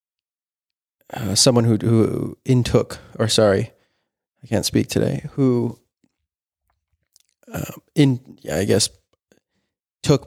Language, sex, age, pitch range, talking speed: English, male, 20-39, 100-115 Hz, 105 wpm